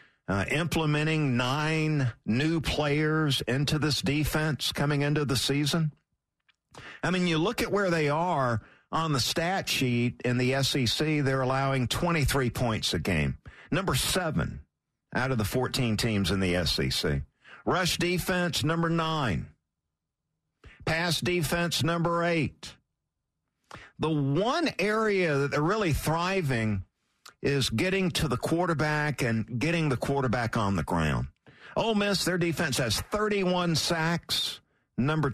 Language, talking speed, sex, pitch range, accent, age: English, 130 wpm, male, 115-160 Hz, American, 50-69